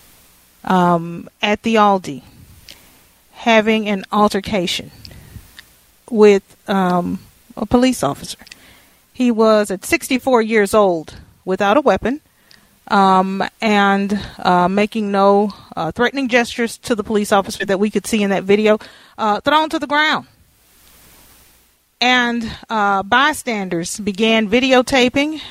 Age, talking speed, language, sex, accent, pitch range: 40-59, 120 wpm, English, female, American, 195-235 Hz